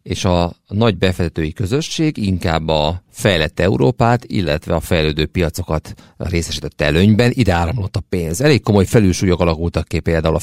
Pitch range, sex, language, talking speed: 80-100 Hz, male, Hungarian, 150 wpm